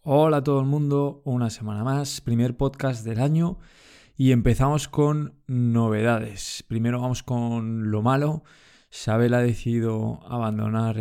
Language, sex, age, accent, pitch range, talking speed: Spanish, male, 20-39, Spanish, 110-135 Hz, 135 wpm